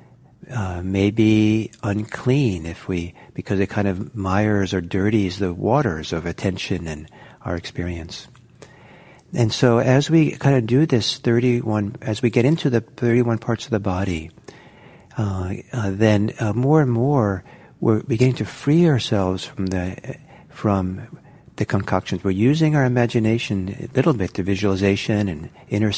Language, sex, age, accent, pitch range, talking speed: English, male, 50-69, American, 100-130 Hz, 155 wpm